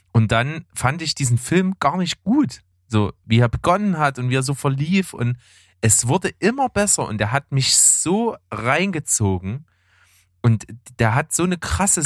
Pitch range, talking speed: 110-155 Hz, 180 wpm